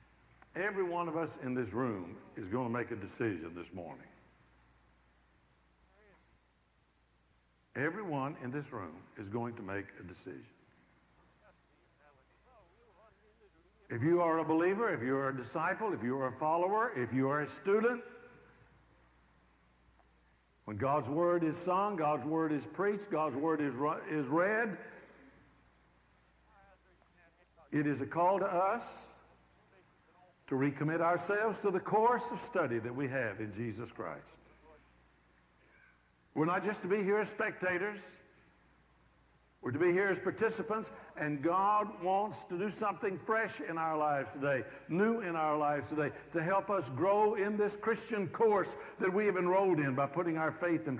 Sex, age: male, 60-79